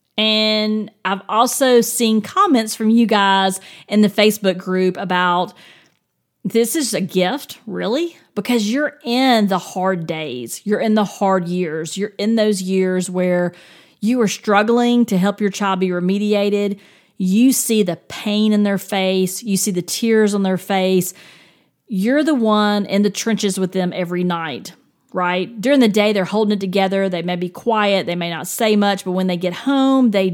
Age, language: 40-59, English